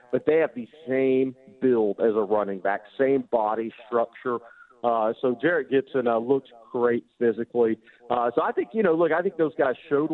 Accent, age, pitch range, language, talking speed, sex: American, 40-59, 115-135 Hz, English, 195 wpm, male